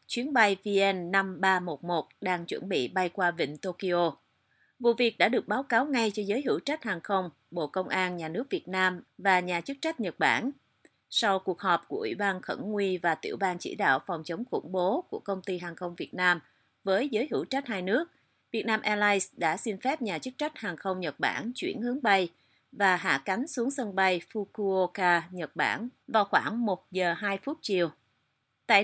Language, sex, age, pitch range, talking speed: Vietnamese, female, 30-49, 175-230 Hz, 205 wpm